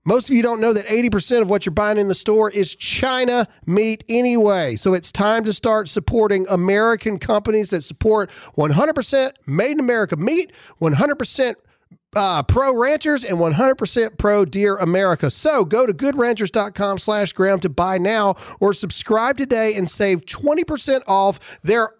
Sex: male